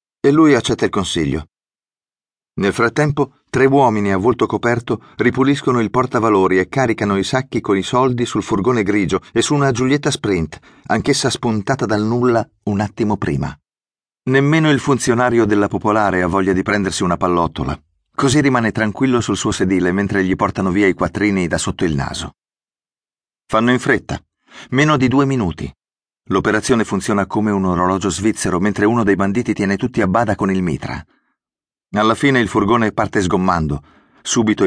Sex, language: male, Italian